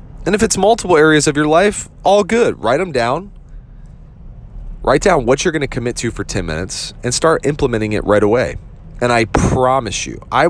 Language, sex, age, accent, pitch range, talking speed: English, male, 30-49, American, 100-130 Hz, 200 wpm